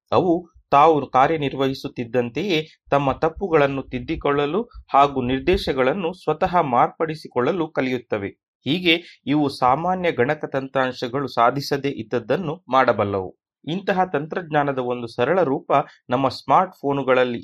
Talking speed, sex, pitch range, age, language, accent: 90 wpm, male, 130-165 Hz, 30-49, Kannada, native